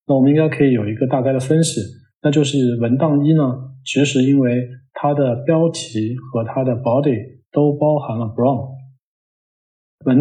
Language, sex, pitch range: Chinese, male, 120-145 Hz